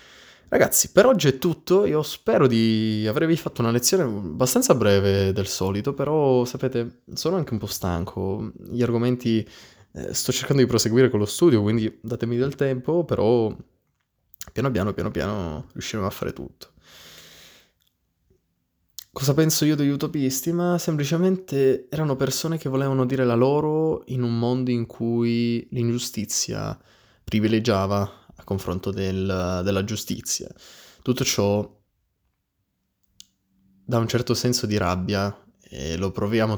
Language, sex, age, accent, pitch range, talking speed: Italian, male, 20-39, native, 95-130 Hz, 135 wpm